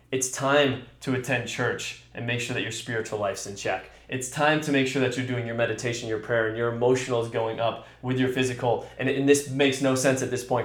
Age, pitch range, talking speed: 20-39, 110-135 Hz, 250 wpm